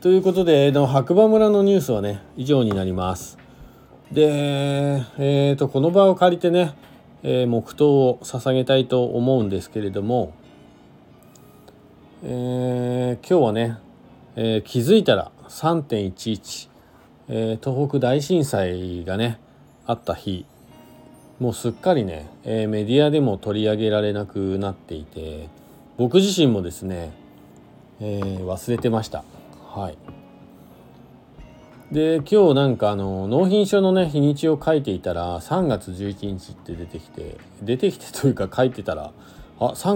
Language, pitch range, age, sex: Japanese, 95-145 Hz, 40-59, male